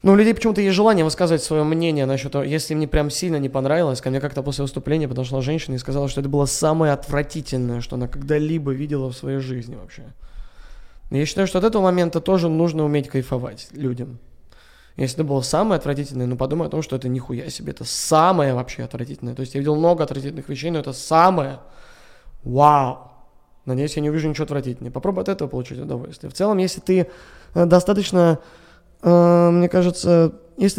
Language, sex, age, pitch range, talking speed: Russian, male, 20-39, 140-190 Hz, 190 wpm